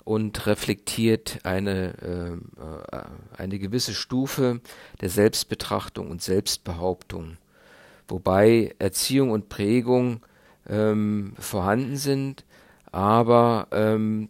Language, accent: German, German